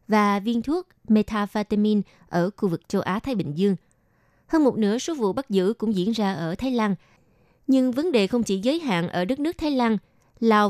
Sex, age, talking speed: female, 20-39, 210 wpm